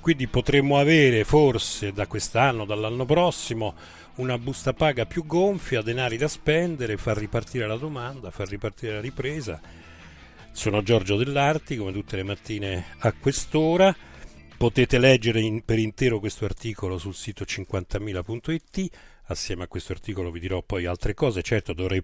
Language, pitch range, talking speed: Italian, 95-130 Hz, 145 wpm